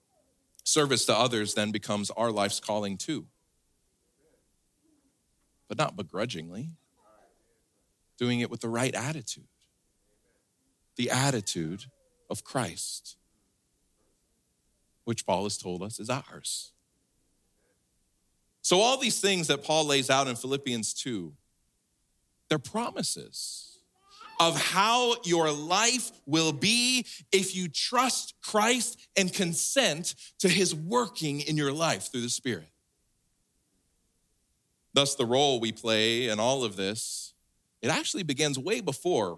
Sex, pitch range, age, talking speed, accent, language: male, 105-165 Hz, 40-59, 115 wpm, American, English